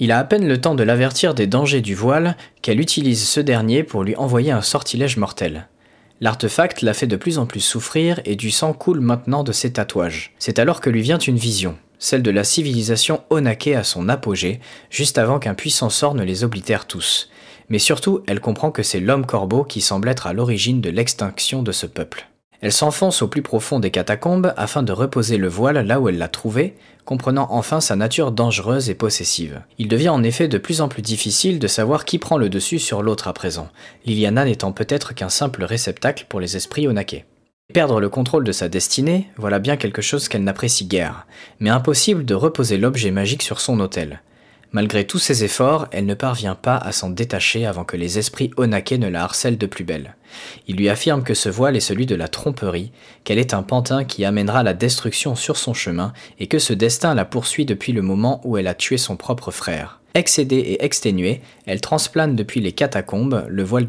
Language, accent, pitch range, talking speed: French, French, 100-140 Hz, 210 wpm